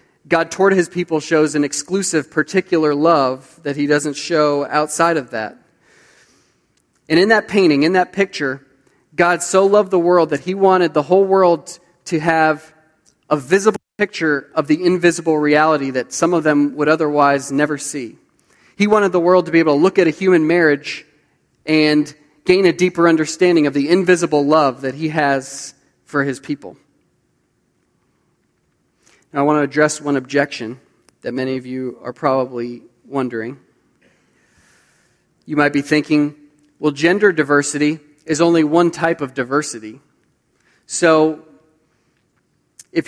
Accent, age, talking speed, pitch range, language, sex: American, 30-49, 150 wpm, 145-170 Hz, English, male